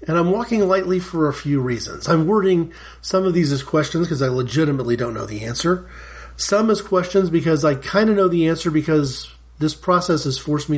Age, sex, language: 40-59, male, English